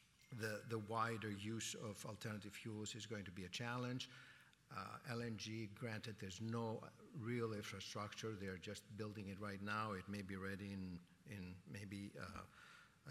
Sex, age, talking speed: male, 50-69, 155 wpm